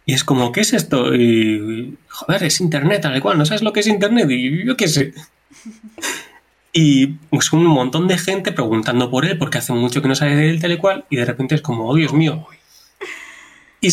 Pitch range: 140-195 Hz